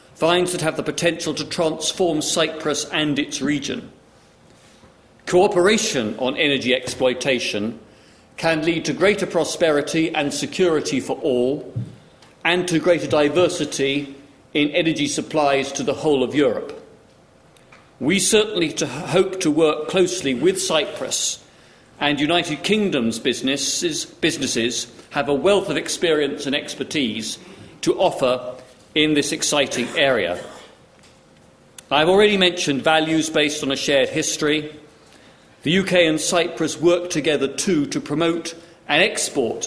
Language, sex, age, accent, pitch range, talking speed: English, male, 50-69, British, 140-175 Hz, 125 wpm